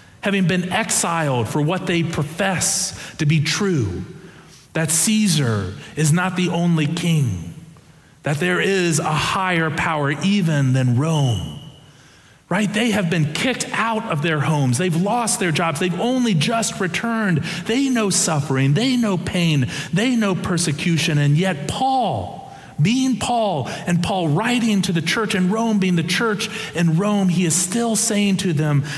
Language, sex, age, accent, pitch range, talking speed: English, male, 40-59, American, 145-200 Hz, 155 wpm